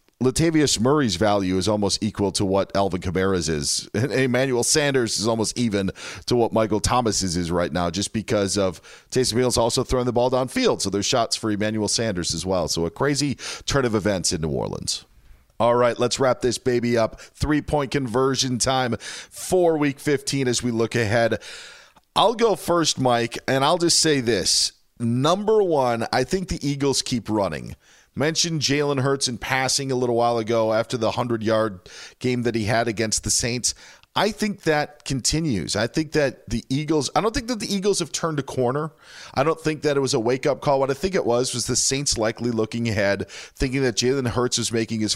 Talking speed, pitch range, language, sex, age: 200 wpm, 105-140 Hz, English, male, 40-59